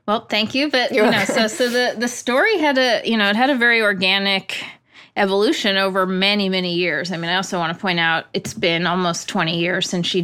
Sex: female